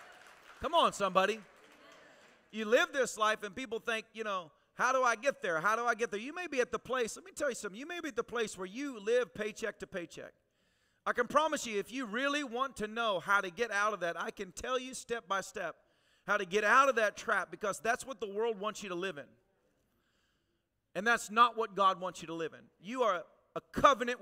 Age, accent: 40-59, American